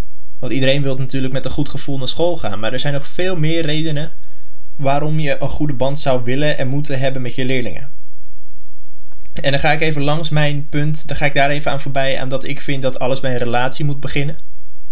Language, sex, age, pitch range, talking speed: Dutch, male, 20-39, 120-155 Hz, 225 wpm